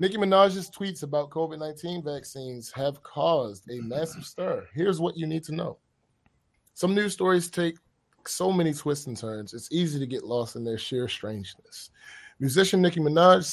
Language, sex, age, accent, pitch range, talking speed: English, male, 20-39, American, 120-170 Hz, 170 wpm